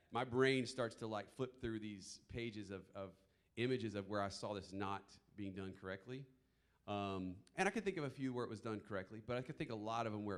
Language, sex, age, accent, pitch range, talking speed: English, male, 40-59, American, 95-135 Hz, 255 wpm